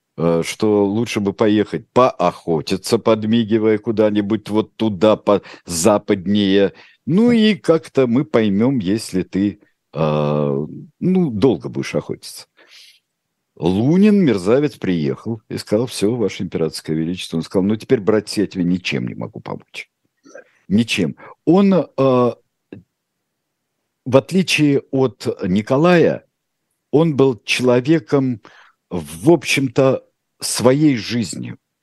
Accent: native